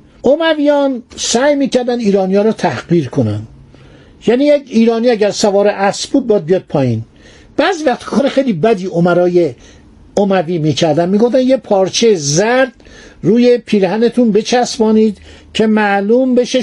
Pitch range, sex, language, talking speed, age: 190-250 Hz, male, Persian, 120 wpm, 50-69